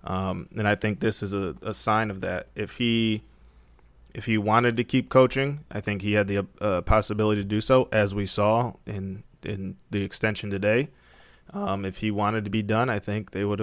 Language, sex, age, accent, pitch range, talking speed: English, male, 20-39, American, 100-115 Hz, 210 wpm